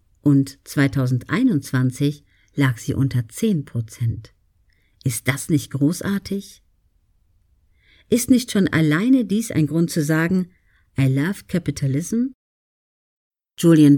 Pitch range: 130-195 Hz